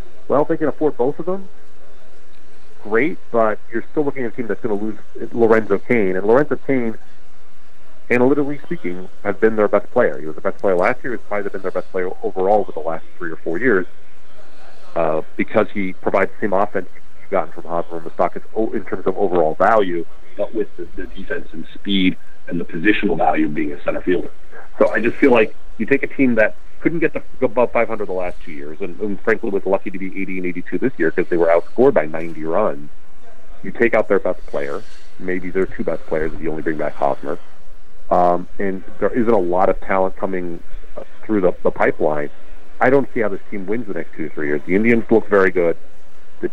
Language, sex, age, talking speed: English, male, 40-59, 225 wpm